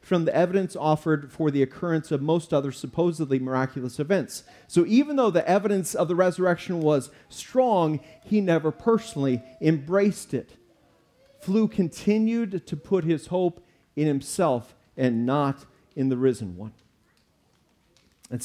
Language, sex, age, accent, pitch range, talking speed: English, male, 40-59, American, 150-205 Hz, 140 wpm